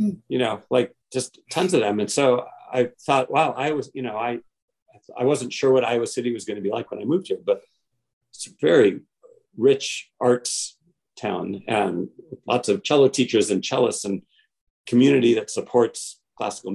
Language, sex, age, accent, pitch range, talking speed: English, male, 40-59, American, 115-145 Hz, 185 wpm